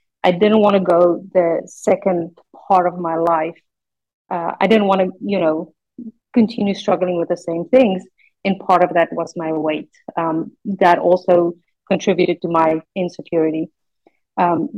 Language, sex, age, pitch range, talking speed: English, female, 30-49, 165-190 Hz, 160 wpm